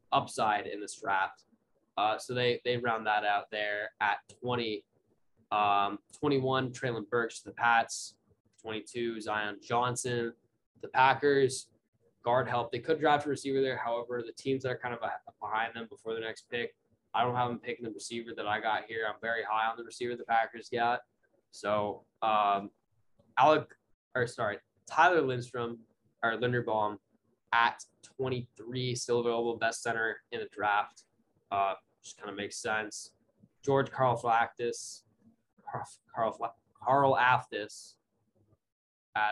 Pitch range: 110-125 Hz